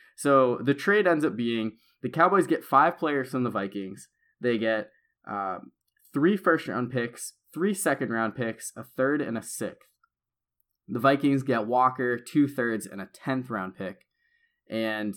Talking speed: 165 wpm